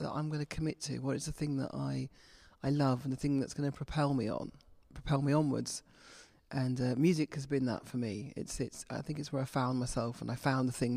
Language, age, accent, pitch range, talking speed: English, 40-59, British, 130-155 Hz, 265 wpm